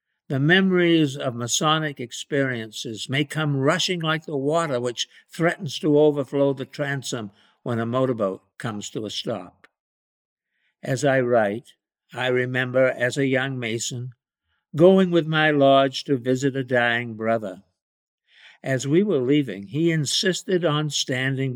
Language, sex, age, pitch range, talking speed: English, male, 60-79, 110-145 Hz, 140 wpm